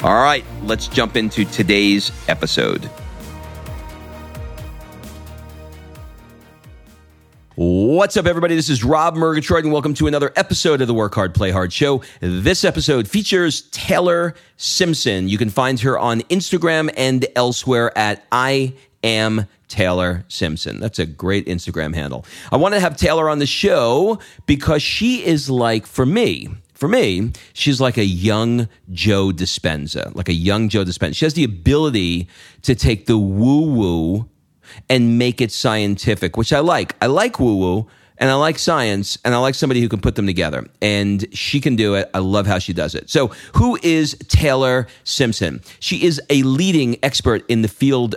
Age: 40-59